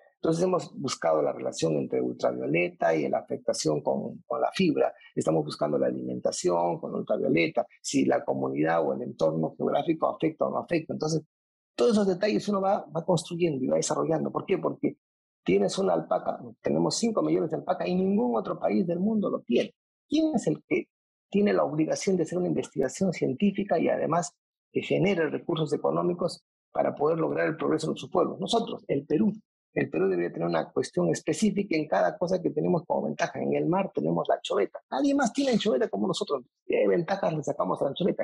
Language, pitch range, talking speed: Spanish, 155-200 Hz, 195 wpm